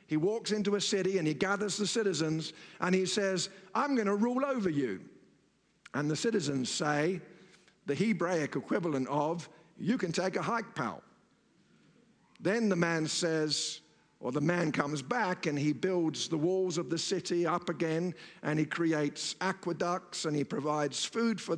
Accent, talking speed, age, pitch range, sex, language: British, 170 wpm, 50-69, 160-205 Hz, male, English